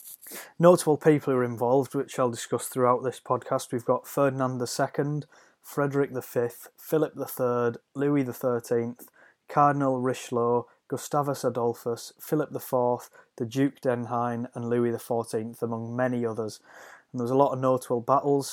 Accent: British